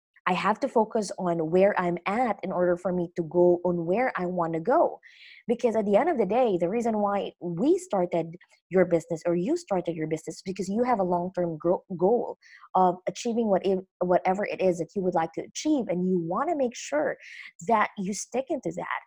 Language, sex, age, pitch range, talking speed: English, female, 20-39, 175-240 Hz, 210 wpm